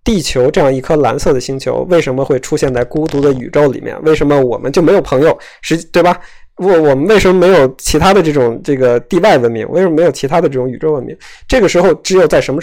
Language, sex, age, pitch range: Chinese, male, 20-39, 130-155 Hz